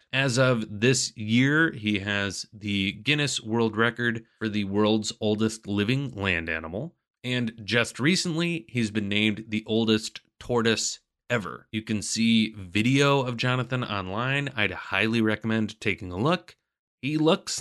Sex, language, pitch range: male, English, 105-135 Hz